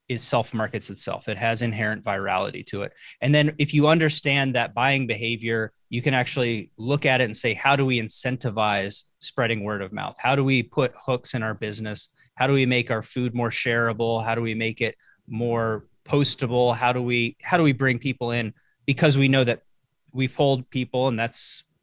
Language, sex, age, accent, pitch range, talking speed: English, male, 30-49, American, 115-135 Hz, 205 wpm